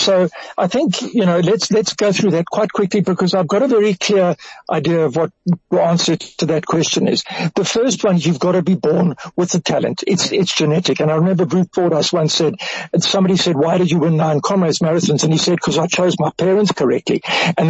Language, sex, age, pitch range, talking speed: English, male, 60-79, 160-190 Hz, 235 wpm